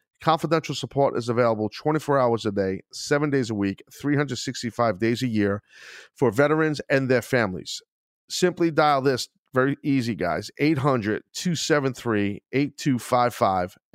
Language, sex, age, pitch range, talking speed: English, male, 40-59, 115-140 Hz, 120 wpm